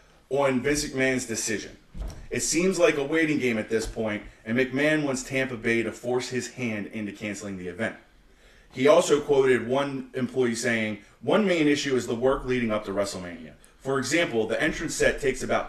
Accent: American